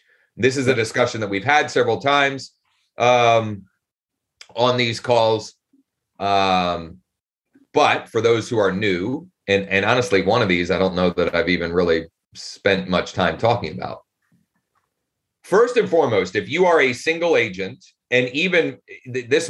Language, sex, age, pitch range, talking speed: English, male, 30-49, 100-140 Hz, 155 wpm